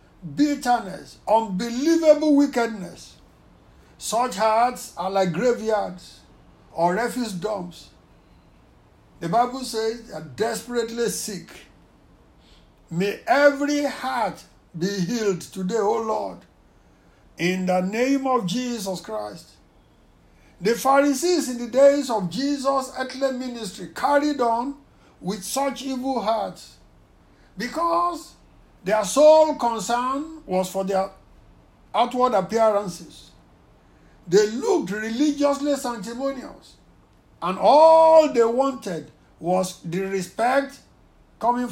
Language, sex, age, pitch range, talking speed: English, male, 60-79, 195-270 Hz, 100 wpm